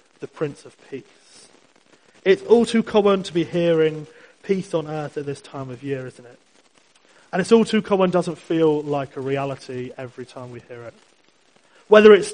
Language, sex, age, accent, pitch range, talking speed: English, male, 30-49, British, 135-185 Hz, 185 wpm